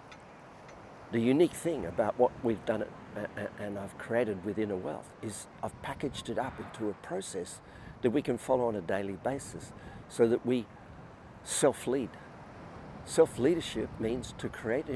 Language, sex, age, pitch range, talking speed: English, male, 50-69, 100-120 Hz, 150 wpm